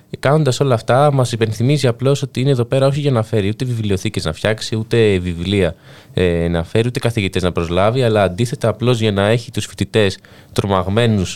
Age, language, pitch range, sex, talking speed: 20-39, Greek, 95-125 Hz, male, 190 wpm